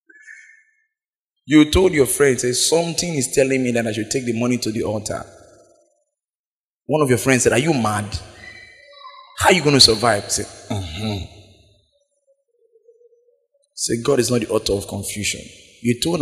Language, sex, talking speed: English, male, 165 wpm